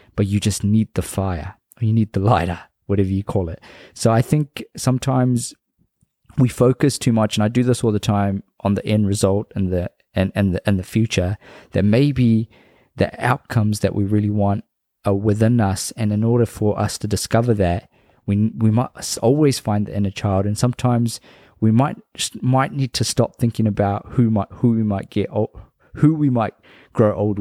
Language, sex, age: English, male, 20-39